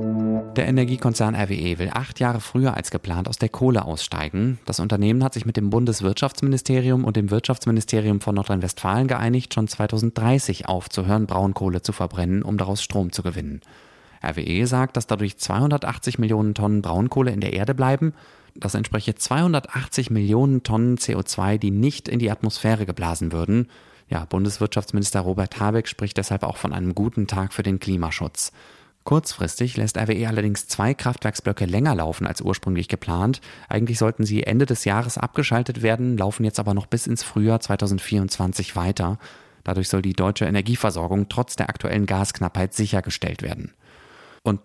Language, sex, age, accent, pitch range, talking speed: German, male, 30-49, German, 95-115 Hz, 155 wpm